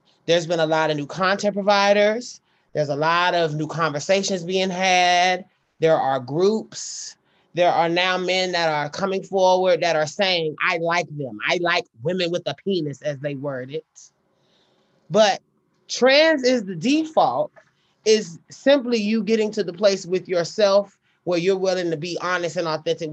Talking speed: 170 wpm